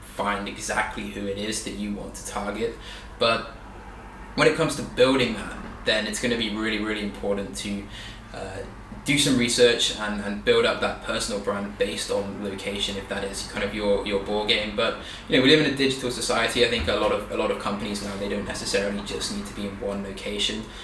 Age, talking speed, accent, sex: 20-39, 225 wpm, British, male